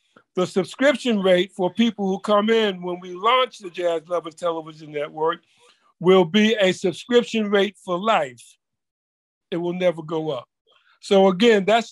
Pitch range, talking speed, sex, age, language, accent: 180-225 Hz, 155 wpm, male, 50-69, Russian, American